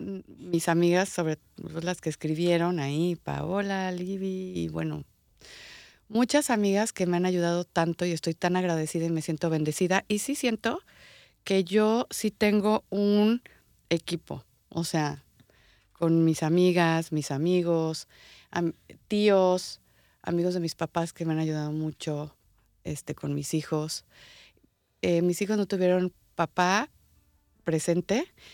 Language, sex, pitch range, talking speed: English, female, 155-190 Hz, 130 wpm